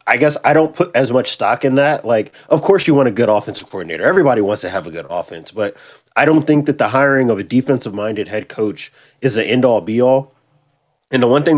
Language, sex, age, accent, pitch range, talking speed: English, male, 20-39, American, 105-135 Hz, 255 wpm